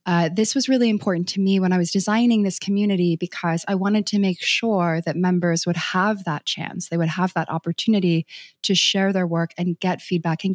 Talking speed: 215 wpm